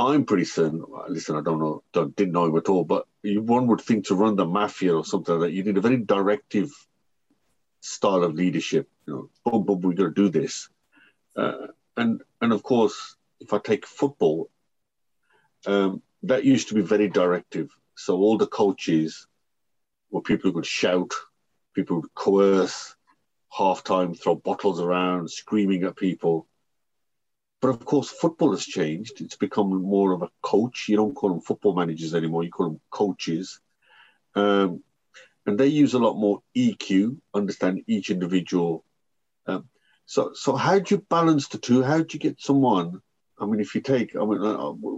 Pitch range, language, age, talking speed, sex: 90-125 Hz, English, 50-69, 175 wpm, male